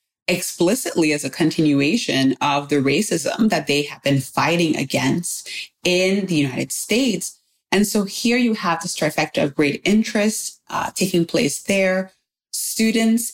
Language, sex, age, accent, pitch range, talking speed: English, female, 20-39, American, 150-185 Hz, 145 wpm